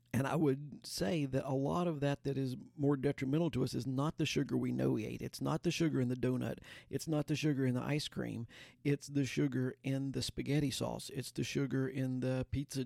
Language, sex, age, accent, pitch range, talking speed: English, male, 50-69, American, 125-145 Hz, 240 wpm